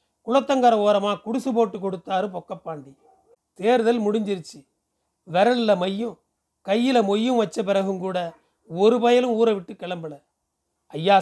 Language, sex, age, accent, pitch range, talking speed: Tamil, male, 40-59, native, 185-230 Hz, 110 wpm